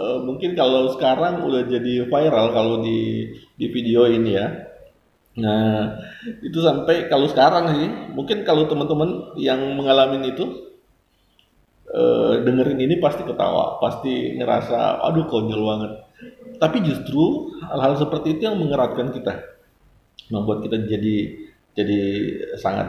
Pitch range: 110-145 Hz